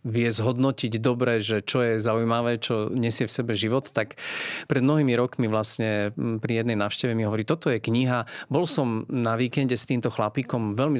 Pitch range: 110-130 Hz